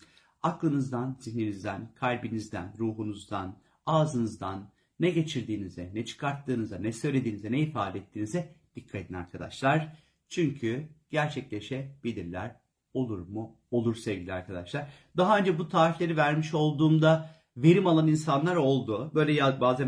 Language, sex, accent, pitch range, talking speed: Turkish, male, native, 115-160 Hz, 110 wpm